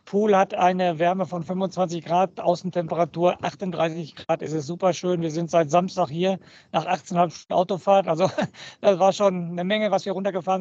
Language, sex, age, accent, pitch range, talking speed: German, male, 50-69, German, 170-195 Hz, 180 wpm